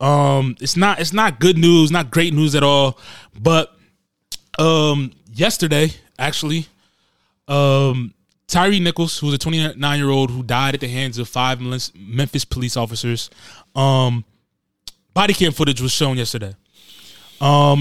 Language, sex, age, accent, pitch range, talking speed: English, male, 20-39, American, 130-160 Hz, 145 wpm